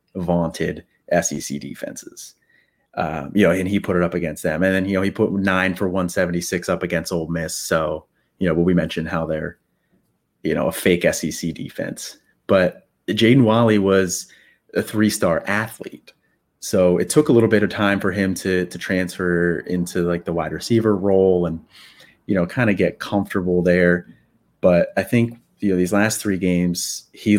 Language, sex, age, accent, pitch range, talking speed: English, male, 30-49, American, 85-95 Hz, 185 wpm